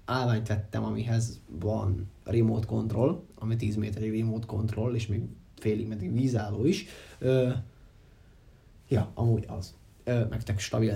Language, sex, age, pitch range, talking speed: Hungarian, male, 20-39, 110-125 Hz, 130 wpm